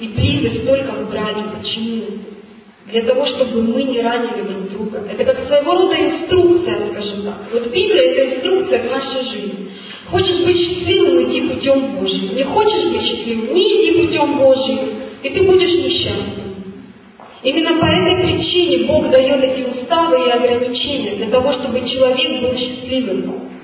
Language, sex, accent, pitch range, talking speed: Russian, female, native, 250-345 Hz, 155 wpm